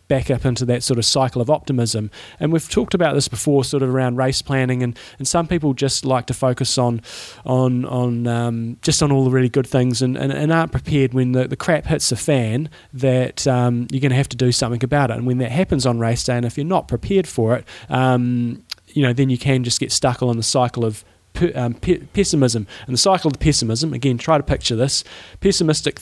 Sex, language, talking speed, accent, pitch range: male, English, 235 wpm, Australian, 120-140 Hz